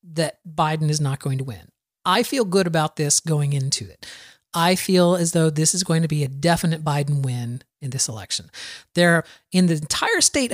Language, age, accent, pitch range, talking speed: English, 40-59, American, 160-230 Hz, 210 wpm